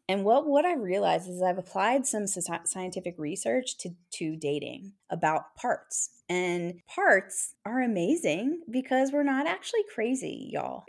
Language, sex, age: English, female, 20-39